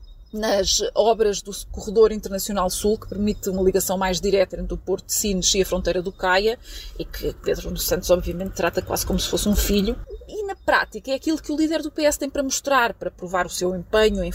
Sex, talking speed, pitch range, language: female, 220 wpm, 190-250 Hz, Portuguese